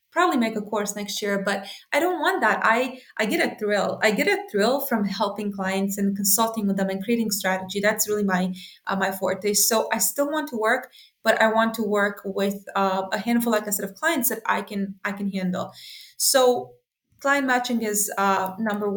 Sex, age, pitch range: female, 20-39, 200-240 Hz